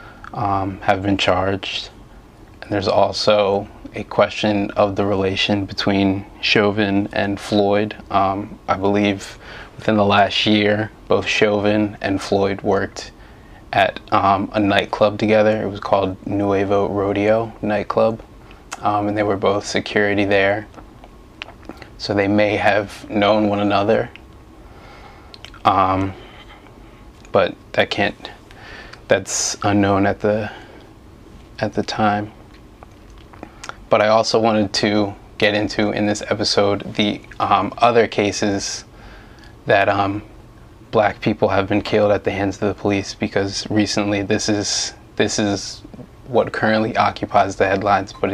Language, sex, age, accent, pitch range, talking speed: English, male, 20-39, American, 100-105 Hz, 125 wpm